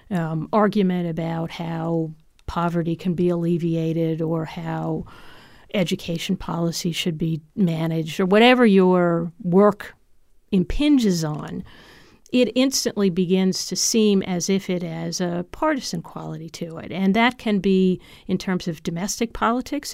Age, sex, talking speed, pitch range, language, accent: 50-69, female, 130 wpm, 170-205 Hz, English, American